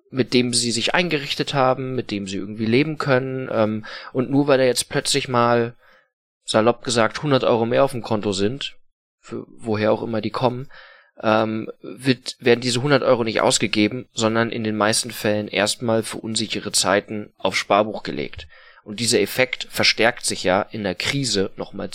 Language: German